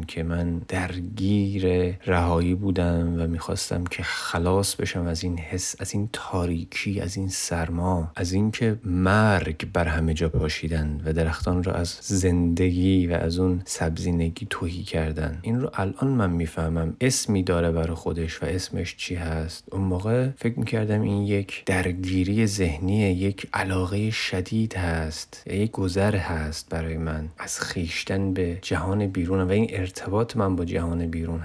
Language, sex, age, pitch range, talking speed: Persian, male, 30-49, 85-100 Hz, 155 wpm